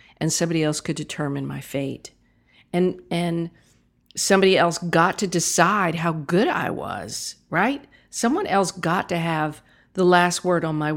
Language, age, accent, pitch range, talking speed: English, 50-69, American, 145-185 Hz, 160 wpm